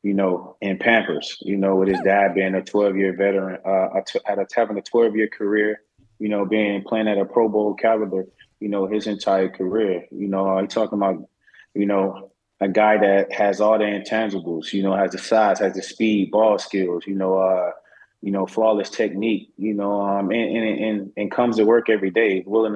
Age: 20-39